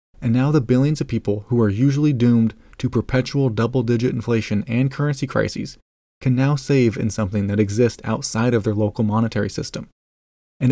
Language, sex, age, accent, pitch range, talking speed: English, male, 20-39, American, 110-130 Hz, 175 wpm